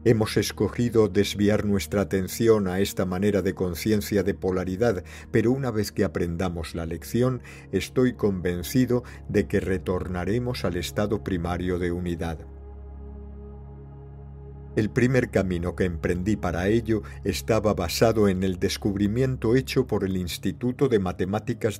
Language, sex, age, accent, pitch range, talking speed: Spanish, male, 50-69, Spanish, 95-110 Hz, 130 wpm